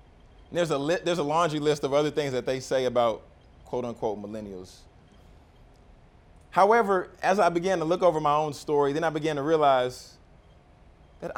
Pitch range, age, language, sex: 135-185 Hz, 20-39, English, male